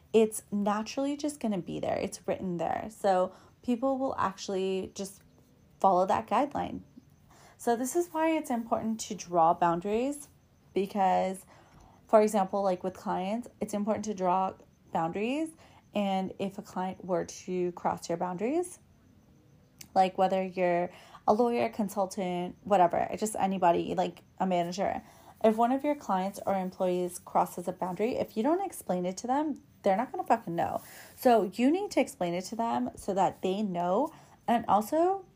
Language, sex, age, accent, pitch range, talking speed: English, female, 20-39, American, 185-230 Hz, 165 wpm